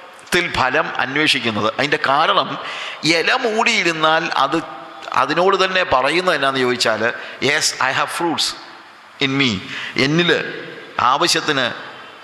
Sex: male